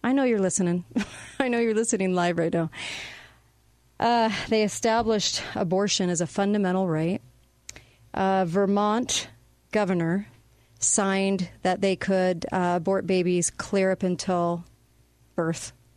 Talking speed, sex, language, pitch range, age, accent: 125 wpm, female, English, 170-200 Hz, 40-59, American